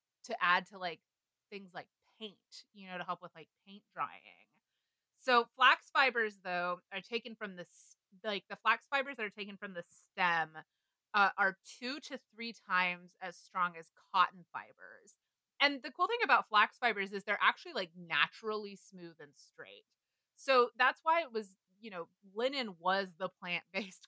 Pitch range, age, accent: 175-215 Hz, 30-49, American